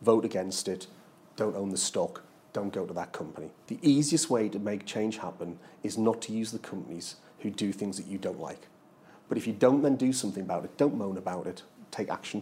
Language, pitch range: English, 95-120 Hz